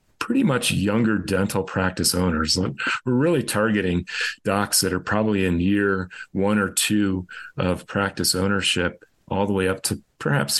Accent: American